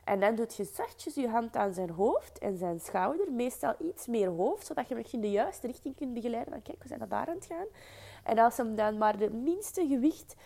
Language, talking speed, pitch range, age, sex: Dutch, 250 wpm, 195-280 Hz, 20-39, female